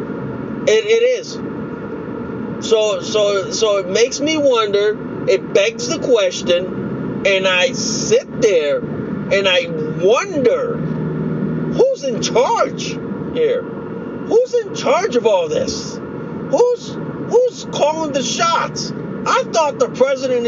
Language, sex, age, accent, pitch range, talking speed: English, male, 40-59, American, 215-260 Hz, 115 wpm